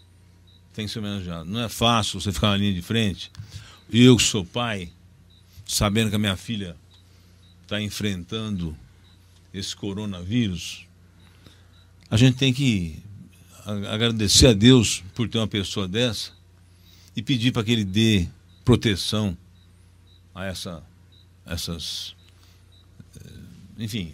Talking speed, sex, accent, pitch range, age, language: 120 wpm, male, Brazilian, 90-115 Hz, 60-79, Portuguese